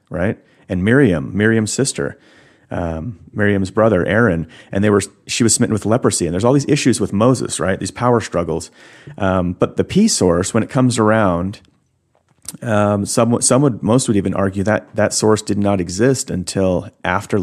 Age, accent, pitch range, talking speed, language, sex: 30-49, American, 95-110 Hz, 185 wpm, English, male